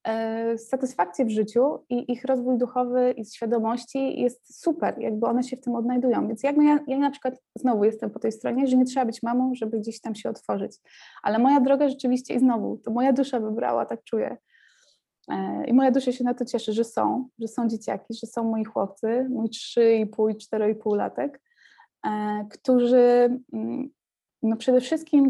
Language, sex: Polish, female